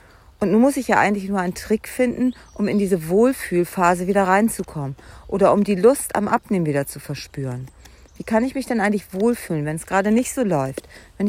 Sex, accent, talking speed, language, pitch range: female, German, 205 wpm, German, 175-220 Hz